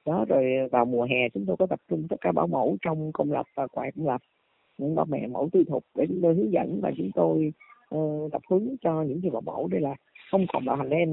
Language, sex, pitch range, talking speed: Vietnamese, female, 135-185 Hz, 270 wpm